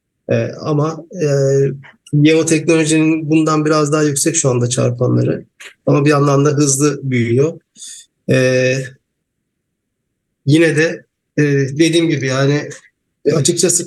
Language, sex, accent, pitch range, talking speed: English, male, Turkish, 135-155 Hz, 115 wpm